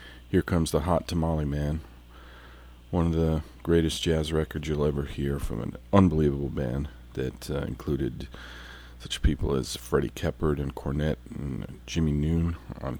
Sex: male